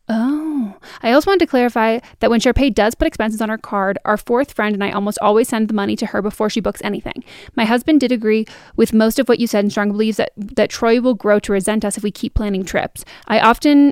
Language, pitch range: English, 210-255 Hz